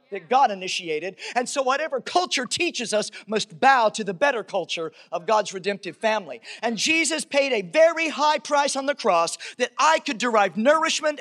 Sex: male